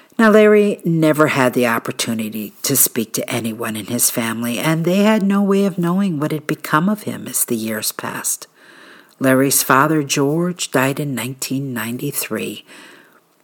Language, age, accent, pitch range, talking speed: English, 50-69, American, 130-180 Hz, 155 wpm